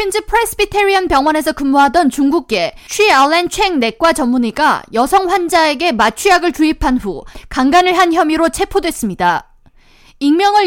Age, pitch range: 20-39, 260-360 Hz